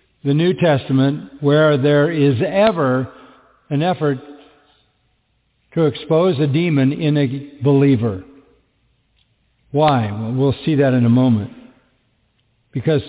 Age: 60-79